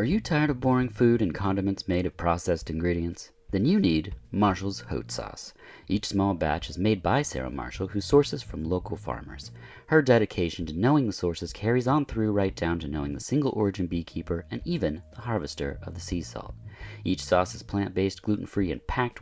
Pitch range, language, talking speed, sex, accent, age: 85-115 Hz, English, 195 wpm, male, American, 40-59